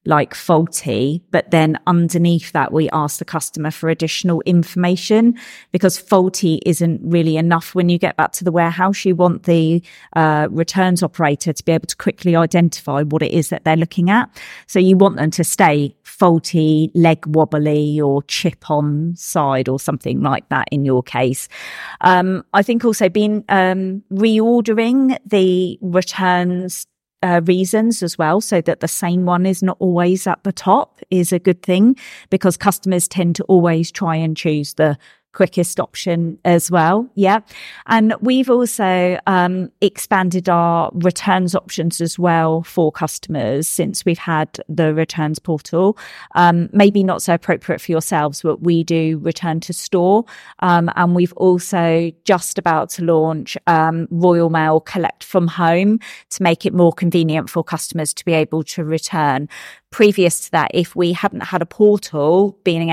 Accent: British